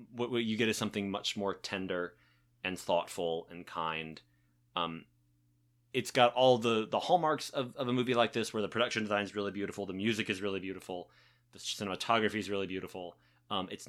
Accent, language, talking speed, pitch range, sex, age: American, English, 190 wpm, 95-115 Hz, male, 30-49